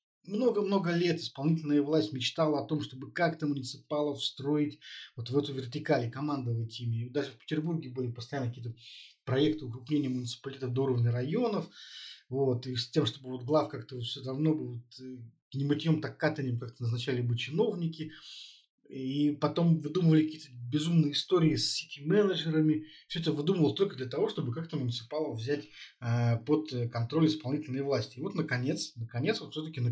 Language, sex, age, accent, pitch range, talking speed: Russian, male, 20-39, native, 120-155 Hz, 160 wpm